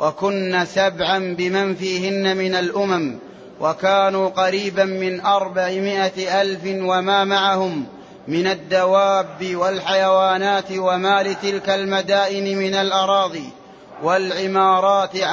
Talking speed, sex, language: 85 wpm, male, Arabic